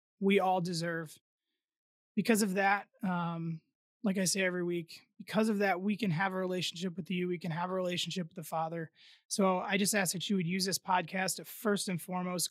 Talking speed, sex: 210 wpm, male